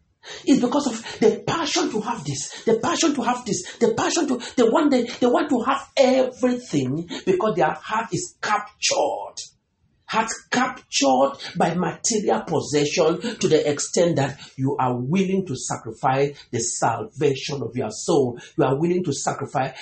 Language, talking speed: English, 160 wpm